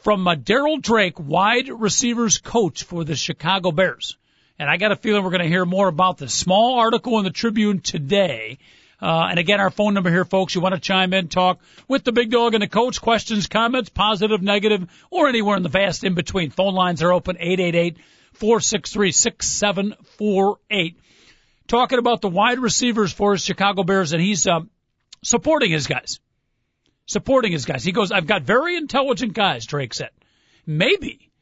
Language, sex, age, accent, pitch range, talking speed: English, male, 50-69, American, 175-225 Hz, 180 wpm